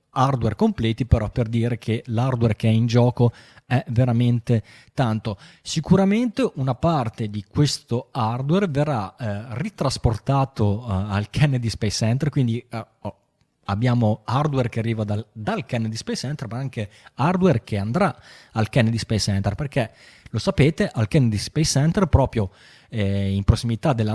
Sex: male